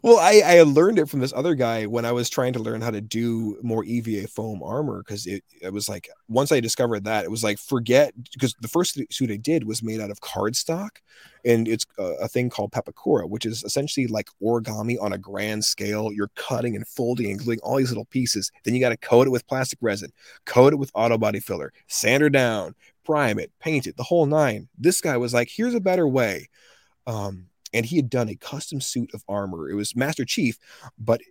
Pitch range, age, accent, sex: 110-135 Hz, 30-49, American, male